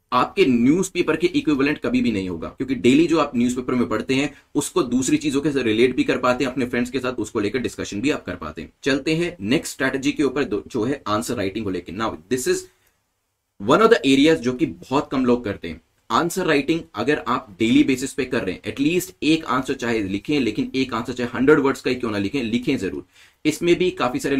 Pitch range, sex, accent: 120-145 Hz, male, native